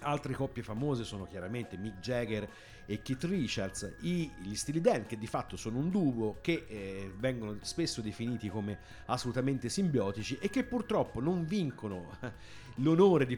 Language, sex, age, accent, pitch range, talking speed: Italian, male, 50-69, native, 105-145 Hz, 155 wpm